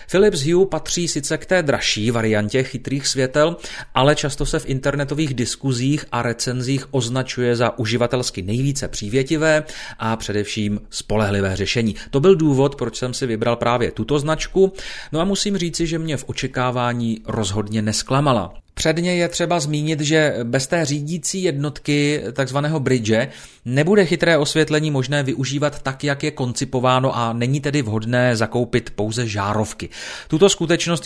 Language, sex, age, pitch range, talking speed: Czech, male, 30-49, 120-150 Hz, 145 wpm